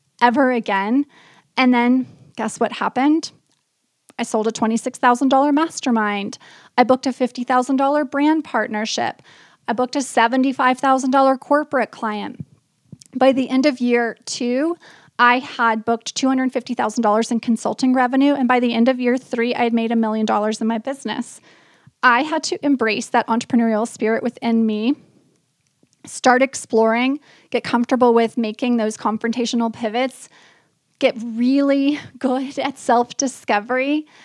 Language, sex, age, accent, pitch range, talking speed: English, female, 30-49, American, 225-260 Hz, 135 wpm